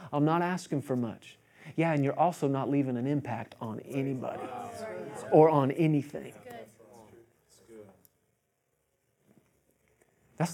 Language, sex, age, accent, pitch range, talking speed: English, male, 30-49, American, 135-170 Hz, 110 wpm